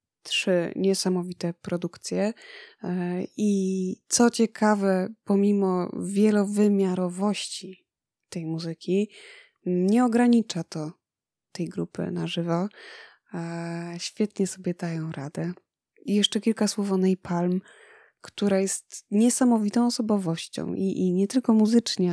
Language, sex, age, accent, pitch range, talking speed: Polish, female, 20-39, native, 170-205 Hz, 100 wpm